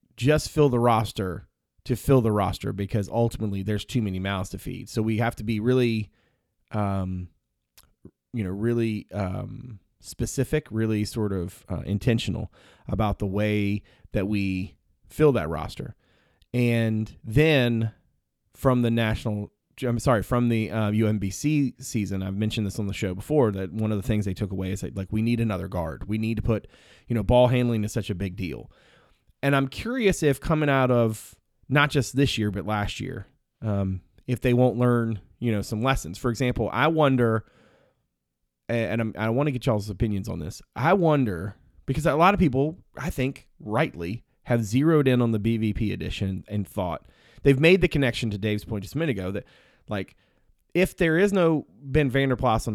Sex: male